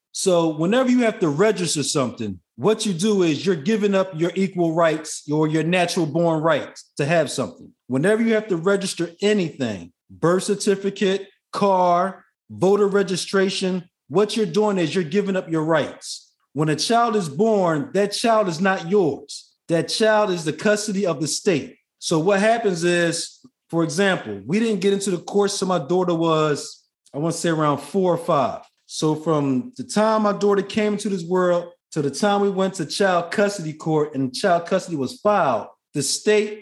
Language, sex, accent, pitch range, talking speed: English, male, American, 160-205 Hz, 185 wpm